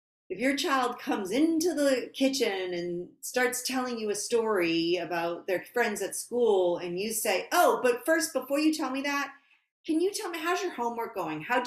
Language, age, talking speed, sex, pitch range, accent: English, 40-59, 195 wpm, female, 165-245 Hz, American